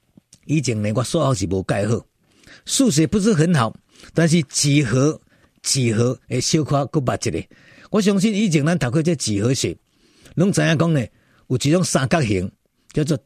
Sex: male